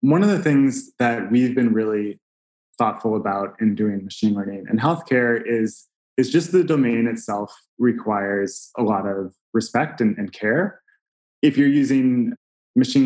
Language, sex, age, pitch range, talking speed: English, male, 20-39, 110-130 Hz, 155 wpm